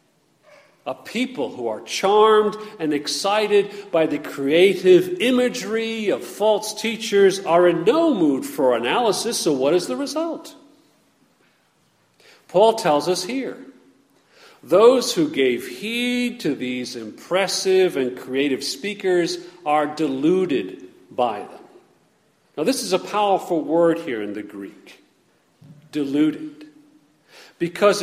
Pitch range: 160-220 Hz